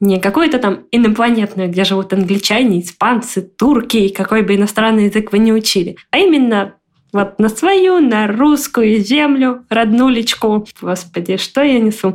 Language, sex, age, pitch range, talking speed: Russian, female, 20-39, 200-255 Hz, 150 wpm